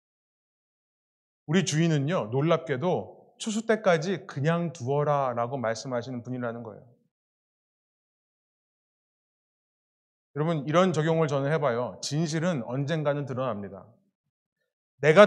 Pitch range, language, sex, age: 165-245 Hz, Korean, male, 30-49